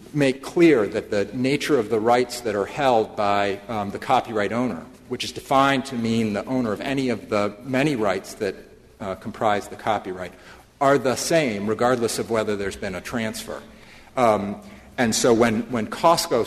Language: English